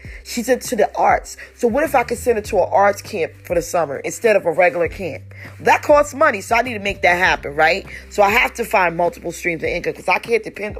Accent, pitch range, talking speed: American, 165-210 Hz, 260 wpm